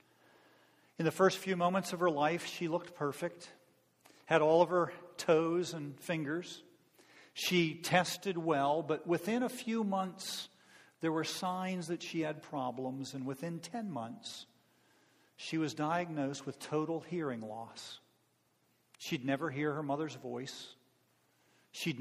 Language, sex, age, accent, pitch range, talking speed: English, male, 50-69, American, 130-175 Hz, 140 wpm